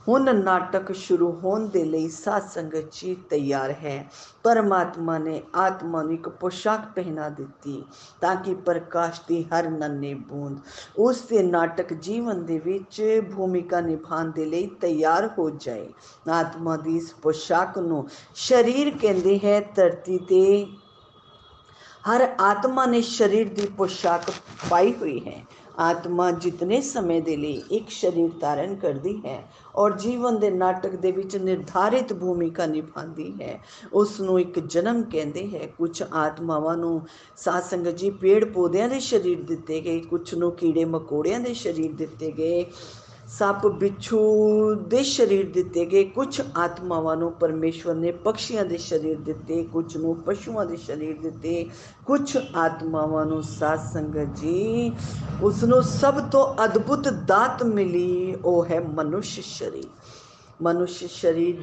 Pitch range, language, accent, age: 160-205 Hz, Hindi, native, 50-69